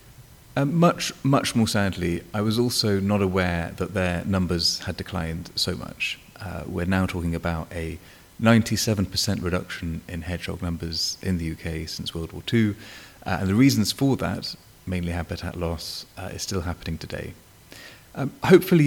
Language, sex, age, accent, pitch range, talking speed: English, male, 30-49, British, 85-100 Hz, 160 wpm